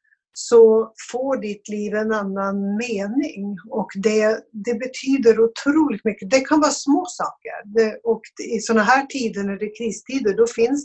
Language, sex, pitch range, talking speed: Swedish, female, 195-235 Hz, 165 wpm